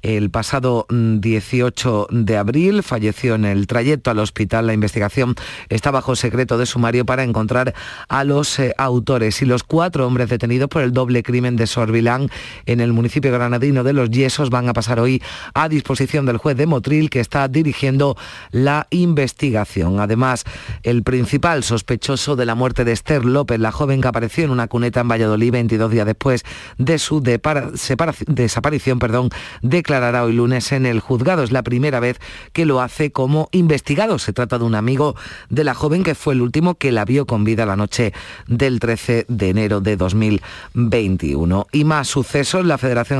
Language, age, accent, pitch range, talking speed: Spanish, 40-59, Spanish, 115-140 Hz, 175 wpm